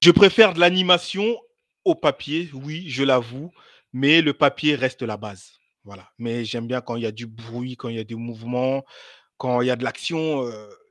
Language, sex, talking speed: French, male, 210 wpm